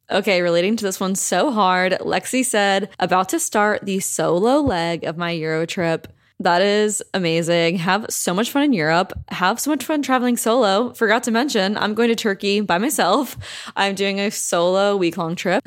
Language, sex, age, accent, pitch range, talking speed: English, female, 20-39, American, 180-235 Hz, 190 wpm